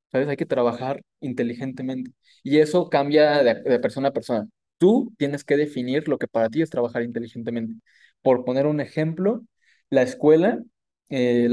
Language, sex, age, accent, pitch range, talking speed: Spanish, male, 20-39, Mexican, 130-170 Hz, 160 wpm